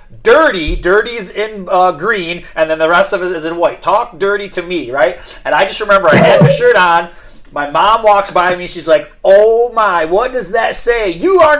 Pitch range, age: 150-210 Hz, 30-49